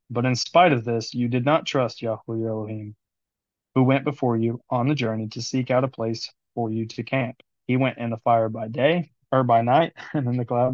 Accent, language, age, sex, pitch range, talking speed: American, English, 20-39, male, 115-130 Hz, 230 wpm